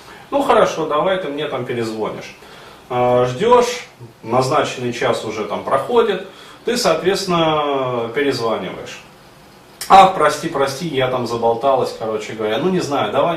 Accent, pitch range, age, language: native, 120-175 Hz, 30-49, Russian